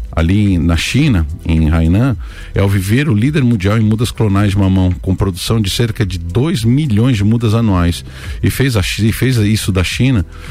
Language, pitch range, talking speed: Portuguese, 90-115 Hz, 190 wpm